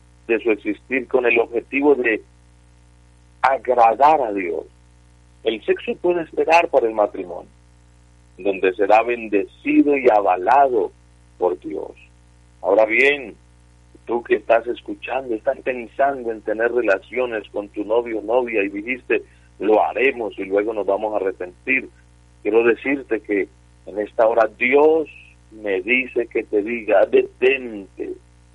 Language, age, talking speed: Spanish, 40-59, 130 wpm